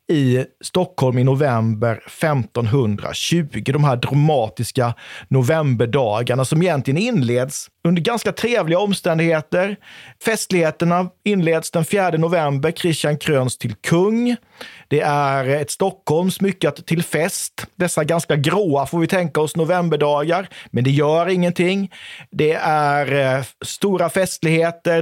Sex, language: male, Swedish